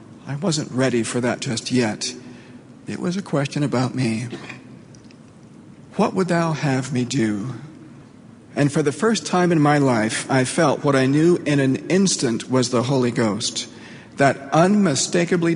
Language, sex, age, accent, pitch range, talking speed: English, male, 50-69, American, 125-170 Hz, 160 wpm